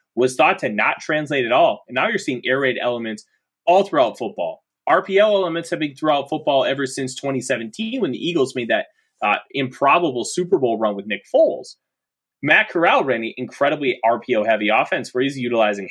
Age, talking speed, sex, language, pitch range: 20-39, 185 wpm, male, English, 110-140 Hz